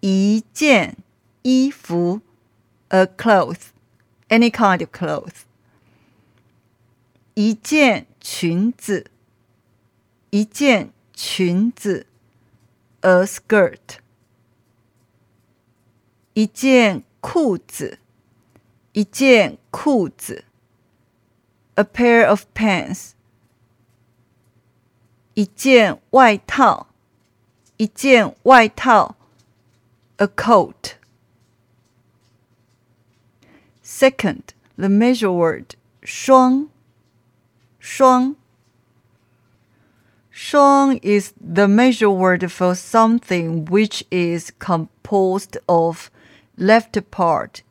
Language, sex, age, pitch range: Chinese, female, 50-69, 120-195 Hz